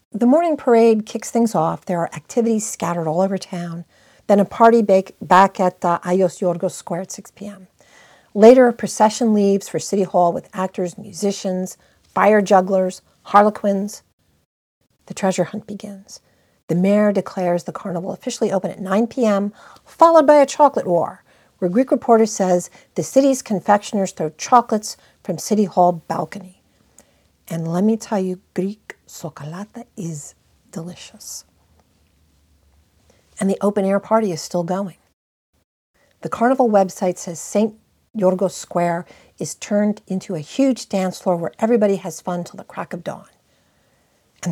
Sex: female